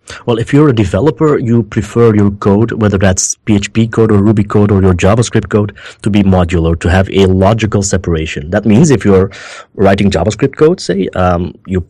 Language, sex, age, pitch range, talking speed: English, male, 30-49, 95-115 Hz, 190 wpm